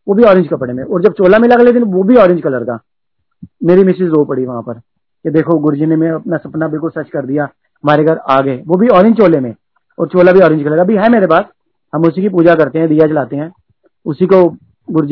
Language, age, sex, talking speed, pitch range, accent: Hindi, 40-59, male, 190 wpm, 150-205 Hz, native